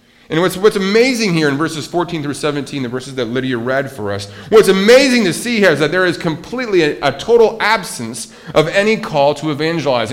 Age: 40-59